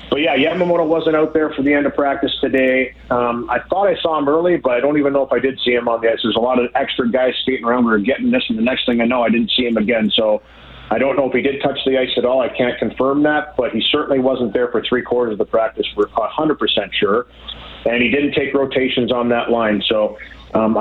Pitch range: 120-140 Hz